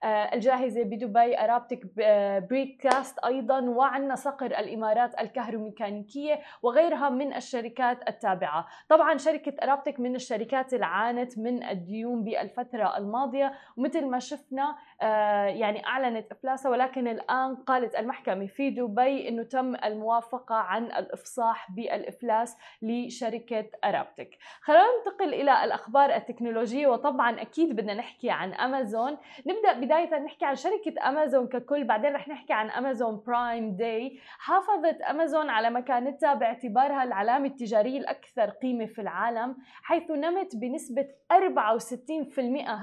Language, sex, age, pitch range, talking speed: Arabic, female, 20-39, 230-285 Hz, 120 wpm